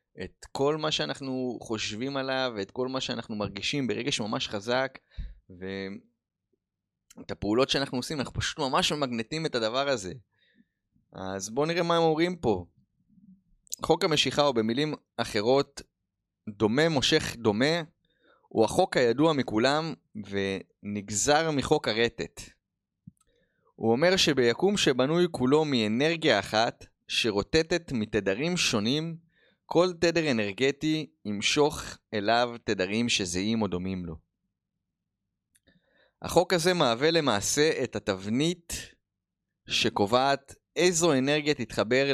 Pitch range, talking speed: 110-155 Hz, 110 wpm